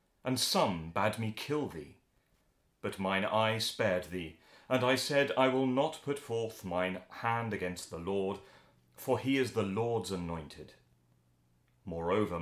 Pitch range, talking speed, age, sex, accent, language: 90-125 Hz, 150 wpm, 30-49, male, British, English